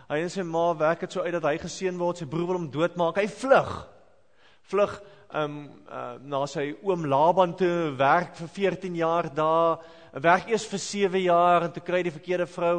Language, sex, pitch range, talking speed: English, male, 140-205 Hz, 200 wpm